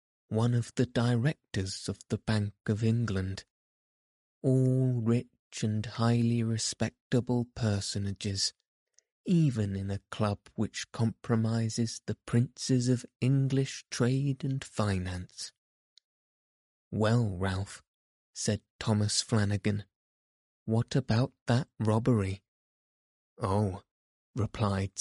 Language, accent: English, British